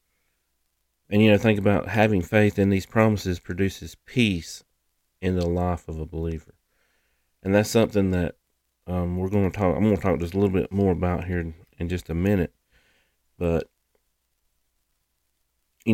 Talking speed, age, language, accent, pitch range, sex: 165 wpm, 40-59, English, American, 75-95 Hz, male